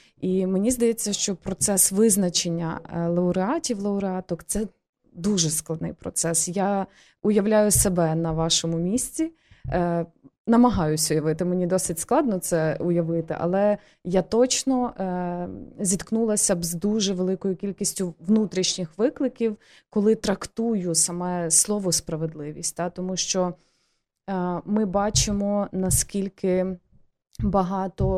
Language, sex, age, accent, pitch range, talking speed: Ukrainian, female, 20-39, native, 170-200 Hz, 110 wpm